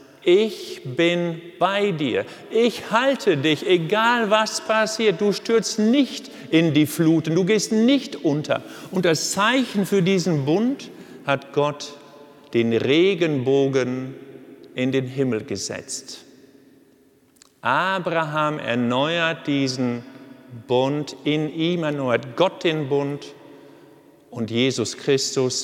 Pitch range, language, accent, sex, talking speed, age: 130-165 Hz, German, German, male, 110 wpm, 50-69